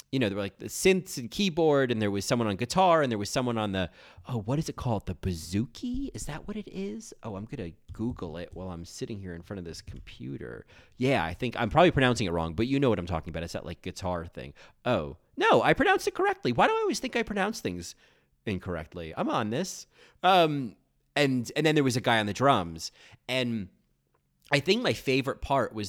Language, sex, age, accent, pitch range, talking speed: English, male, 30-49, American, 90-135 Hz, 240 wpm